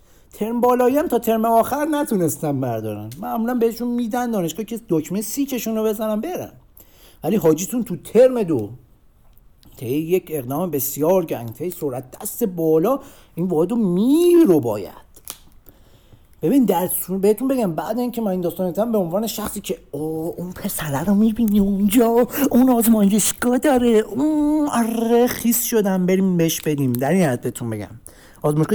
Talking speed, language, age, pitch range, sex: 140 wpm, Persian, 50-69, 165-230 Hz, male